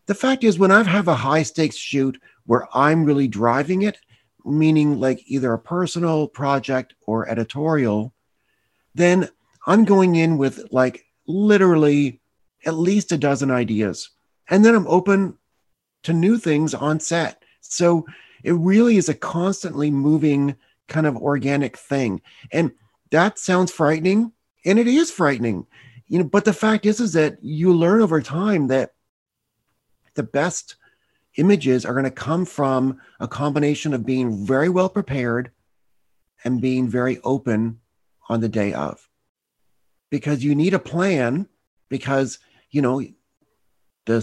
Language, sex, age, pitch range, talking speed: English, male, 40-59, 125-175 Hz, 145 wpm